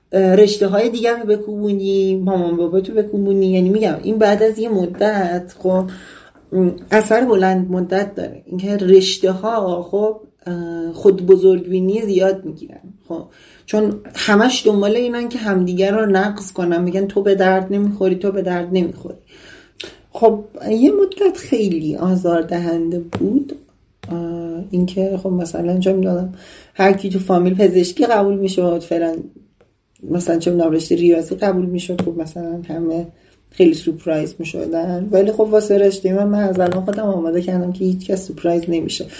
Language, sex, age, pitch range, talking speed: Persian, male, 30-49, 175-210 Hz, 150 wpm